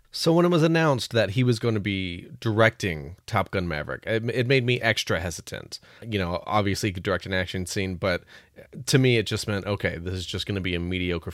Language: English